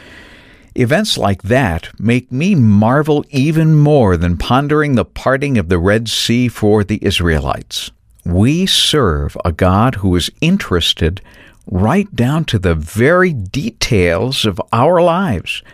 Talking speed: 135 wpm